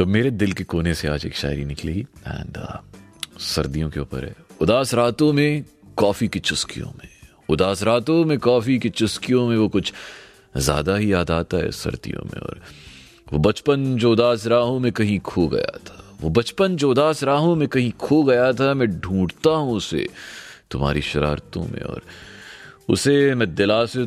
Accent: native